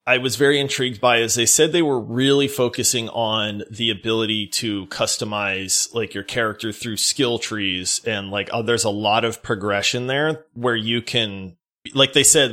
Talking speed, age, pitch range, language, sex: 180 wpm, 30-49, 110-140 Hz, English, male